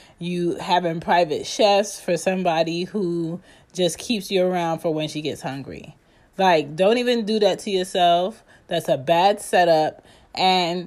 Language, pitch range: English, 150-190 Hz